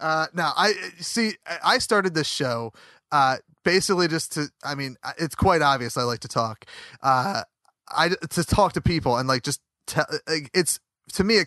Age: 30-49